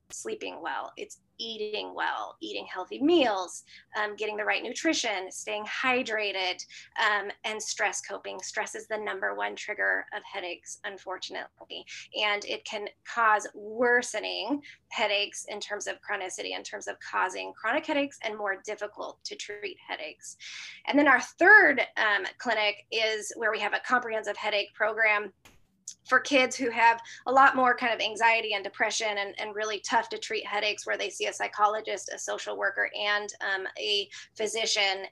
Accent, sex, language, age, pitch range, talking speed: American, female, English, 20-39, 210-290 Hz, 160 wpm